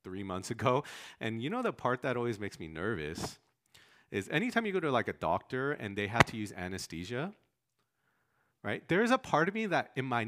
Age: 30-49